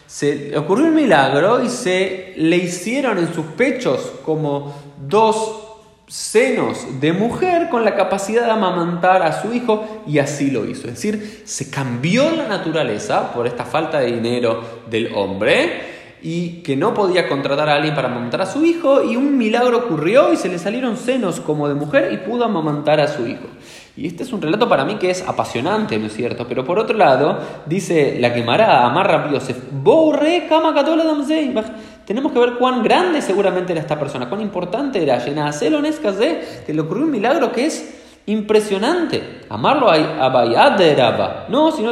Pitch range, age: 150-240 Hz, 20-39